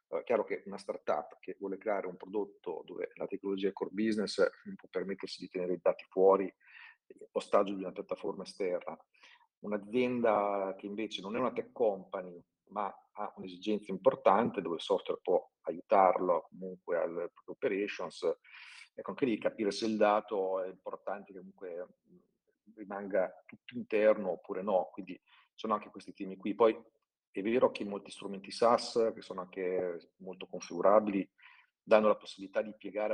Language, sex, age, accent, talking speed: Italian, male, 40-59, native, 160 wpm